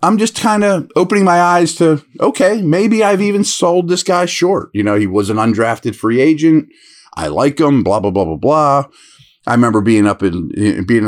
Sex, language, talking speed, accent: male, English, 205 wpm, American